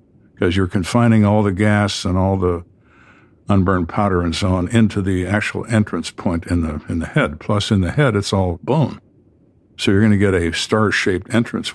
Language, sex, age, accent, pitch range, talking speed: English, male, 60-79, American, 90-110 Hz, 200 wpm